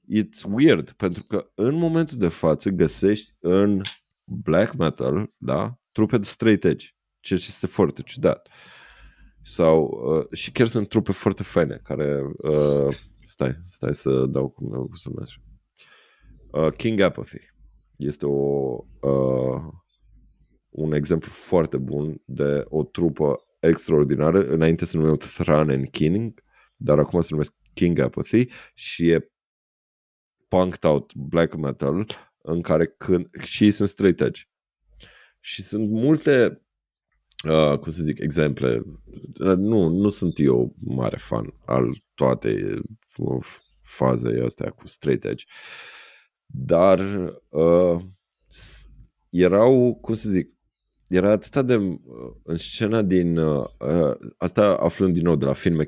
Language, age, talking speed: Romanian, 30-49, 125 wpm